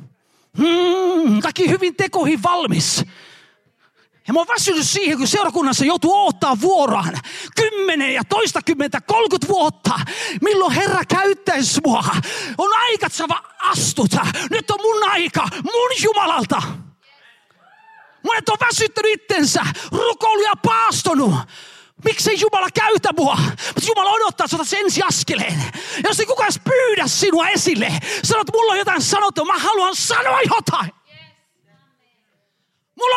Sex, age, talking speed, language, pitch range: male, 30-49, 125 wpm, Finnish, 340-440 Hz